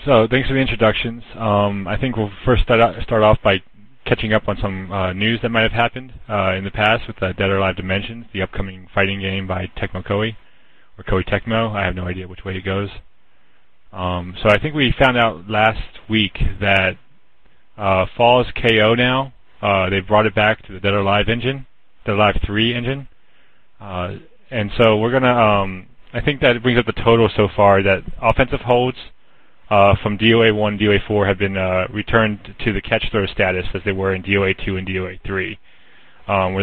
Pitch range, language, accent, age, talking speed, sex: 95-115 Hz, English, American, 30-49, 210 wpm, male